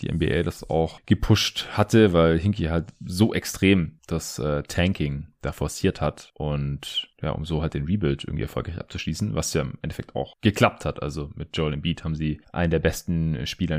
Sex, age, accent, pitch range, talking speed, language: male, 30-49, German, 80-110 Hz, 190 wpm, German